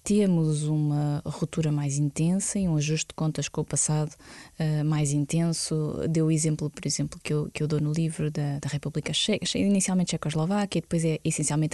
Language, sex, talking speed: Portuguese, female, 185 wpm